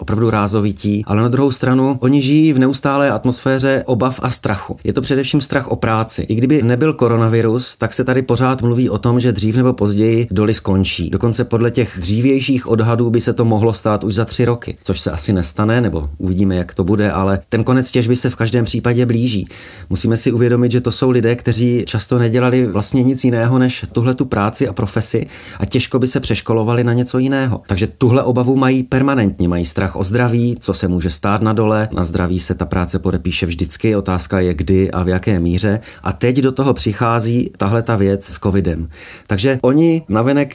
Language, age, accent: Czech, 30-49, native